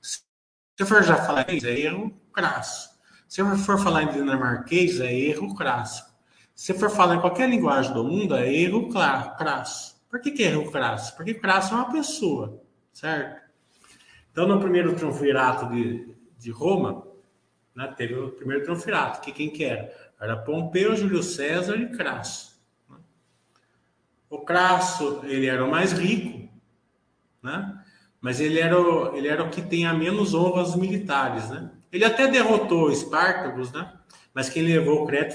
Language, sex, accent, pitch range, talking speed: Portuguese, male, Brazilian, 125-180 Hz, 165 wpm